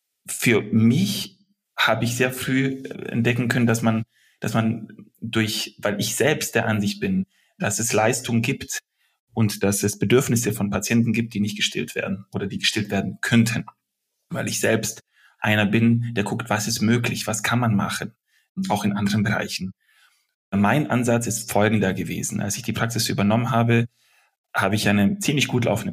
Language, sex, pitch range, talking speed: German, male, 110-120 Hz, 170 wpm